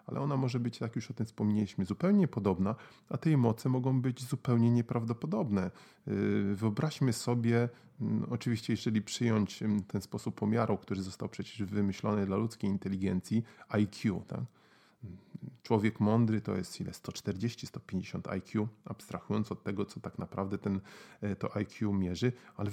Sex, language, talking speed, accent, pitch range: male, Polish, 135 wpm, native, 100-120 Hz